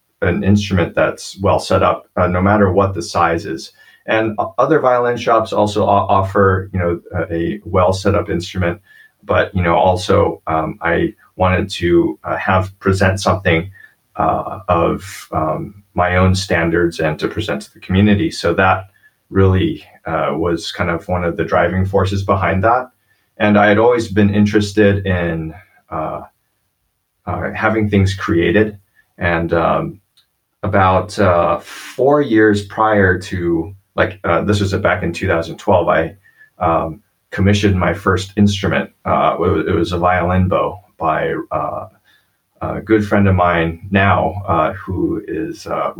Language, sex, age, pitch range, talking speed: English, male, 30-49, 90-105 Hz, 155 wpm